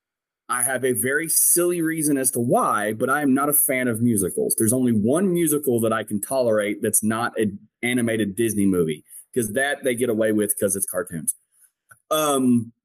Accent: American